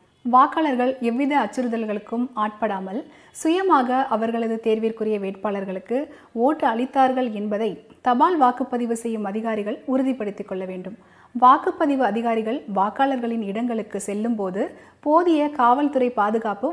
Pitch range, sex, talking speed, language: 215-270 Hz, female, 95 wpm, Tamil